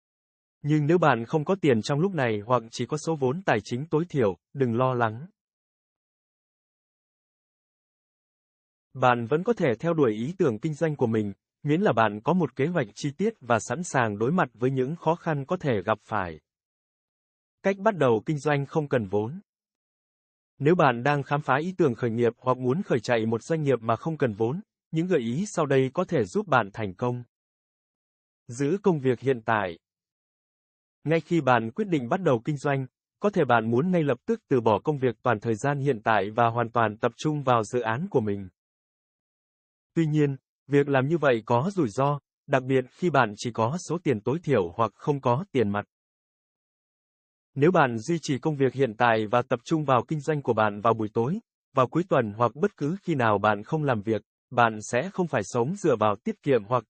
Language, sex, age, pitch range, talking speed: Vietnamese, male, 20-39, 110-155 Hz, 210 wpm